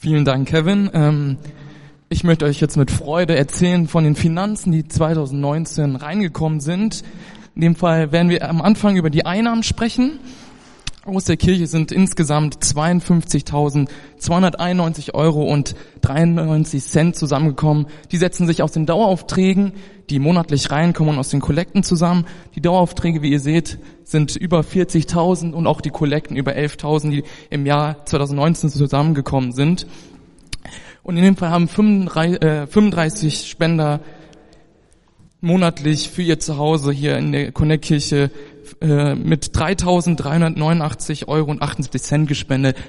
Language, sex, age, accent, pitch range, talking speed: German, male, 20-39, German, 145-170 Hz, 130 wpm